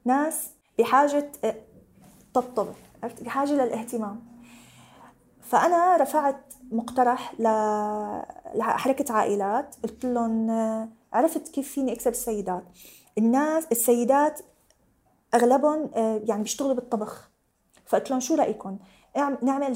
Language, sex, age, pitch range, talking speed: Arabic, female, 20-39, 225-275 Hz, 85 wpm